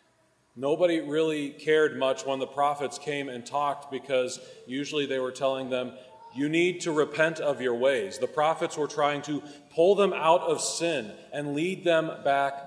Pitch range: 130-155 Hz